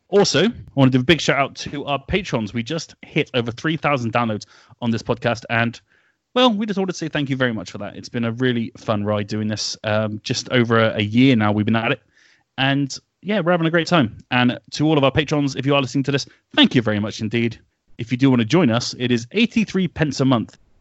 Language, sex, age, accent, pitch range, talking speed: English, male, 30-49, British, 115-170 Hz, 255 wpm